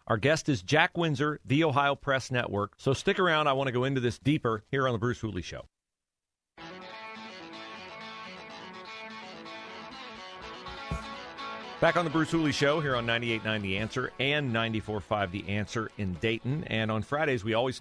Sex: male